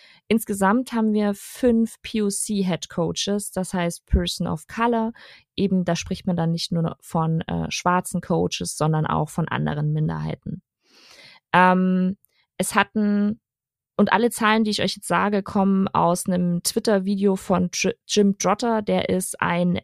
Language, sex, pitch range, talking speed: German, female, 170-205 Hz, 145 wpm